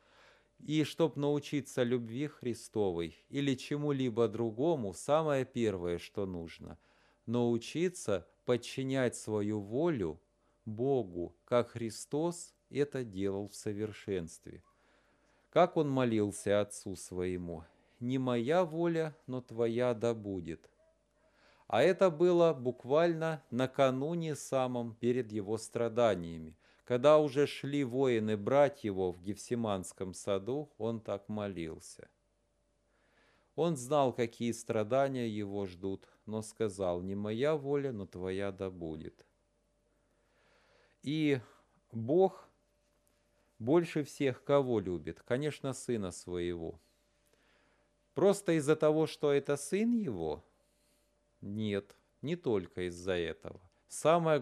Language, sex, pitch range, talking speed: Russian, male, 100-145 Hz, 105 wpm